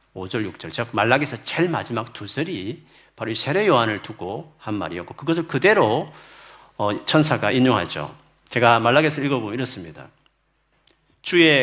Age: 40-59